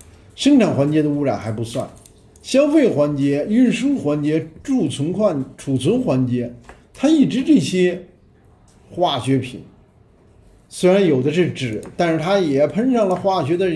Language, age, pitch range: Chinese, 50-69, 130-195 Hz